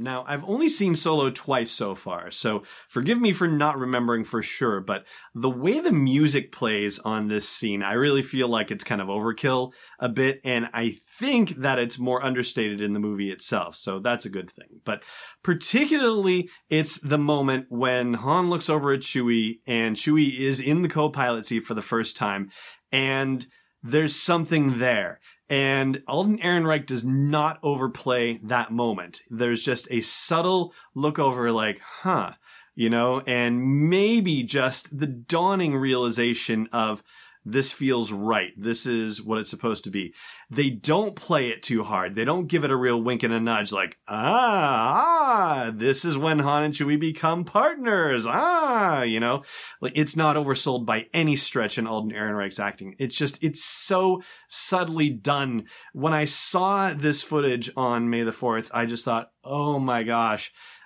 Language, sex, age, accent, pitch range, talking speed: English, male, 30-49, American, 115-155 Hz, 170 wpm